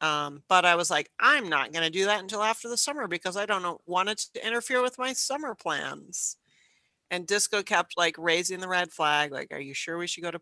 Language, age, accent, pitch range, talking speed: English, 40-59, American, 160-210 Hz, 235 wpm